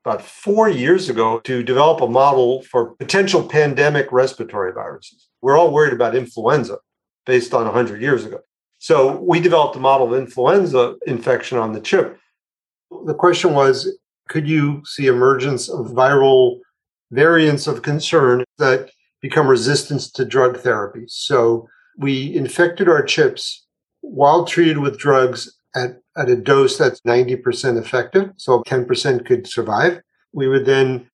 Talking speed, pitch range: 145 wpm, 135-185 Hz